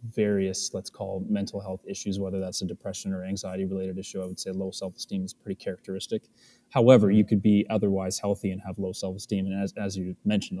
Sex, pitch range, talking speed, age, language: male, 95-115 Hz, 210 wpm, 20-39, English